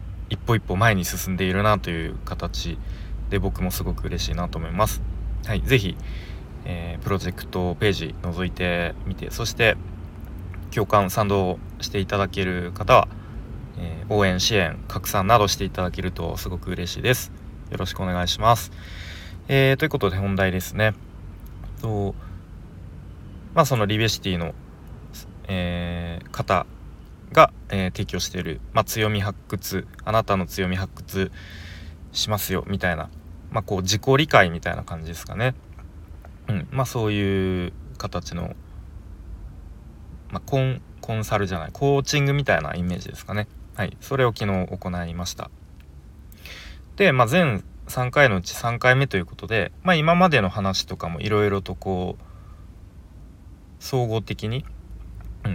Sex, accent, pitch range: male, native, 85-105 Hz